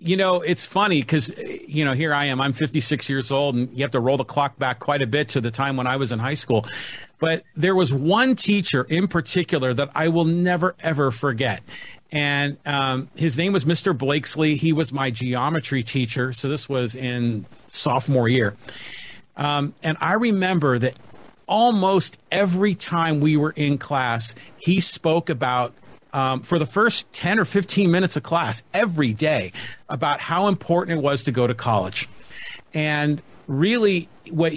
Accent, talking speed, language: American, 180 wpm, English